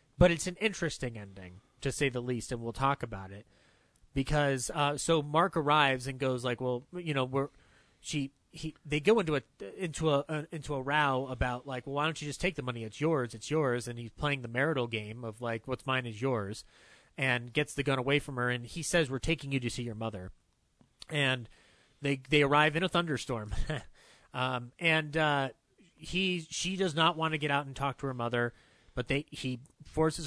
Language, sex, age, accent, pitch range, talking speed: English, male, 30-49, American, 125-155 Hz, 215 wpm